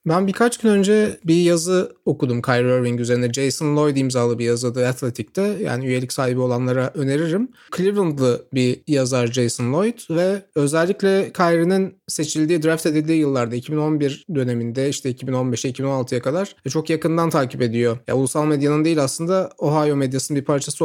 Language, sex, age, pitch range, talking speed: Turkish, male, 30-49, 130-170 Hz, 150 wpm